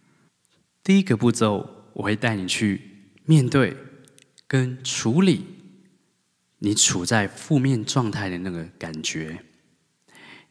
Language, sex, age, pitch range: Chinese, male, 20-39, 100-135 Hz